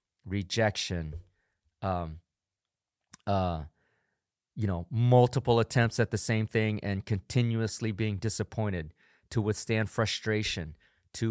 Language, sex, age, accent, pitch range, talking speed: English, male, 30-49, American, 95-120 Hz, 100 wpm